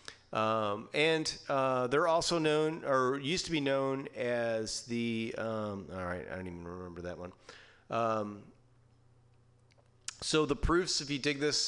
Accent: American